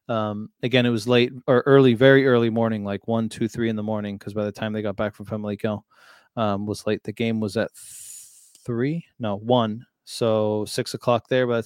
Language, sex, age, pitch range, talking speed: English, male, 20-39, 115-135 Hz, 220 wpm